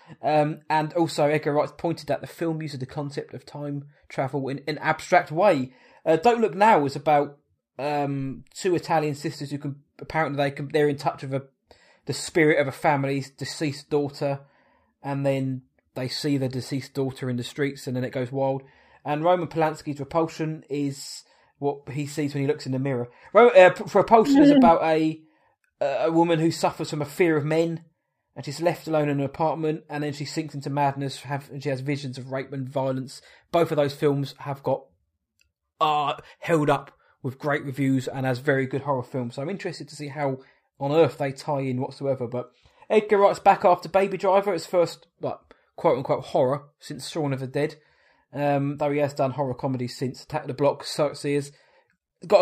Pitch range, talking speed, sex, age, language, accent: 135-155 Hz, 200 wpm, male, 20-39, English, British